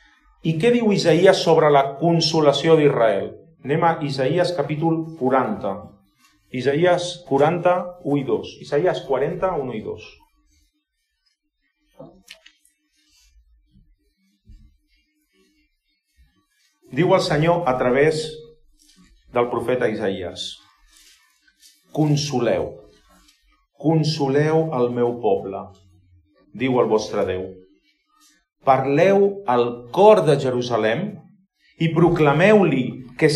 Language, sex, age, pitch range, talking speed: English, male, 40-59, 130-190 Hz, 85 wpm